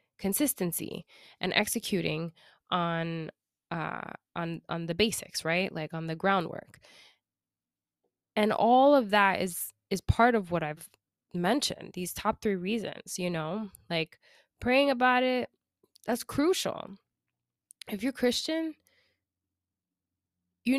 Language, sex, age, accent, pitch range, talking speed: English, female, 20-39, American, 175-235 Hz, 120 wpm